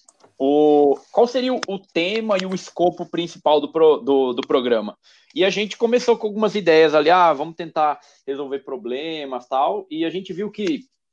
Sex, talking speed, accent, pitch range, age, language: male, 180 wpm, Brazilian, 145-215 Hz, 20-39, Portuguese